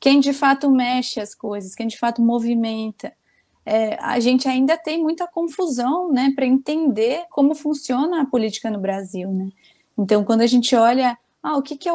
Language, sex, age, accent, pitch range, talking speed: Portuguese, female, 20-39, Brazilian, 225-285 Hz, 185 wpm